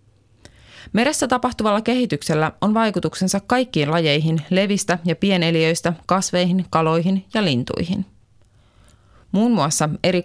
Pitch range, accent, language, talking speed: 135-190 Hz, native, Finnish, 100 wpm